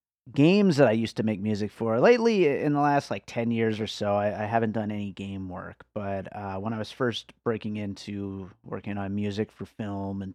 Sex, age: male, 30-49